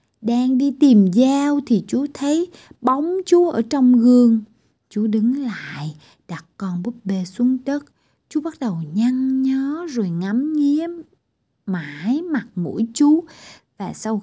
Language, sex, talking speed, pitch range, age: Vietnamese, female, 150 wpm, 190-265 Hz, 20-39